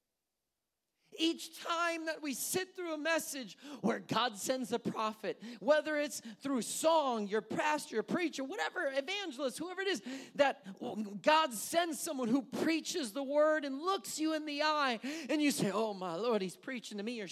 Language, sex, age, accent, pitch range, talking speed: English, male, 40-59, American, 220-300 Hz, 175 wpm